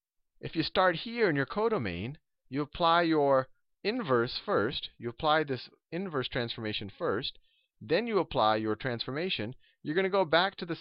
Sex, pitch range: male, 100-160 Hz